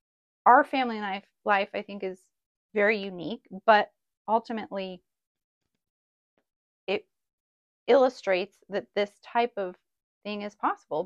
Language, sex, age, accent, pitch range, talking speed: English, female, 30-49, American, 205-260 Hz, 115 wpm